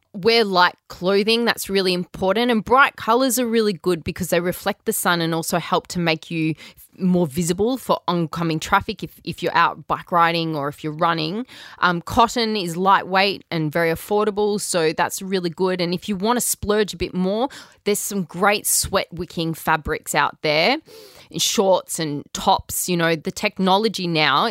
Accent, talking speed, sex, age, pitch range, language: Australian, 185 wpm, female, 20-39, 170-225 Hz, English